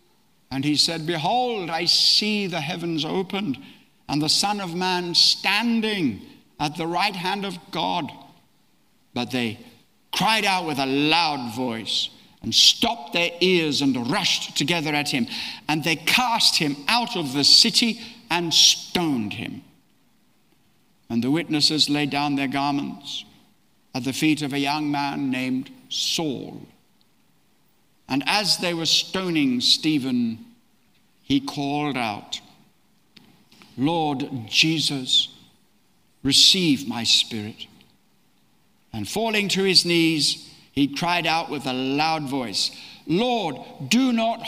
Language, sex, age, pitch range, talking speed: English, male, 60-79, 145-205 Hz, 125 wpm